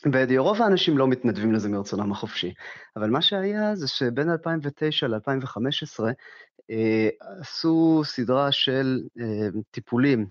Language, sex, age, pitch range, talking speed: Hebrew, male, 30-49, 115-155 Hz, 110 wpm